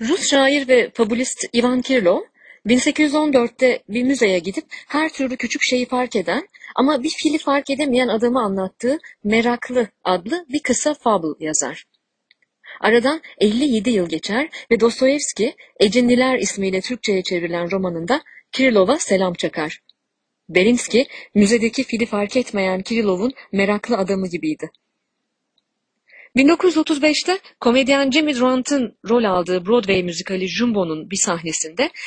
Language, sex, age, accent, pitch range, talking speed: Turkish, female, 30-49, native, 195-280 Hz, 120 wpm